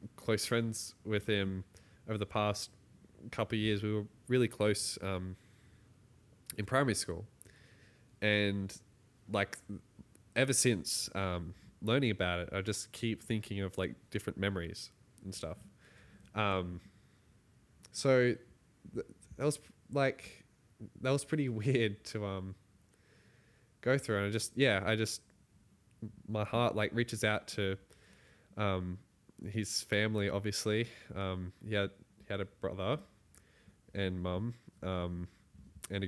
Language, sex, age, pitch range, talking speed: English, male, 10-29, 95-115 Hz, 130 wpm